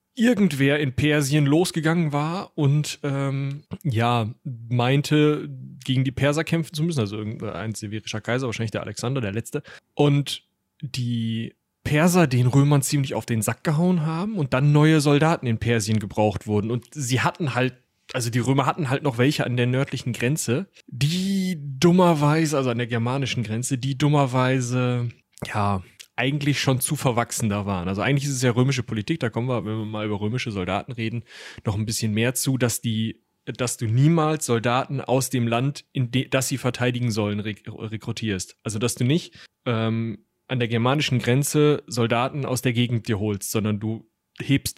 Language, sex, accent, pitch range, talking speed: German, male, German, 115-145 Hz, 175 wpm